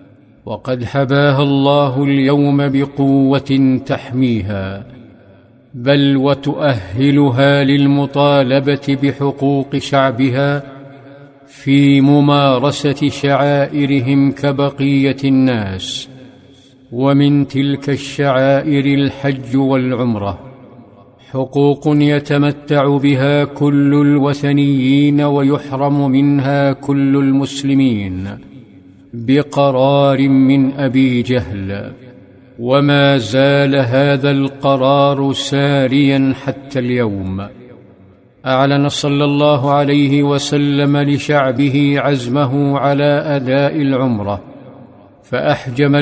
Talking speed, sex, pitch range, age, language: 70 wpm, male, 135-145 Hz, 50-69, Arabic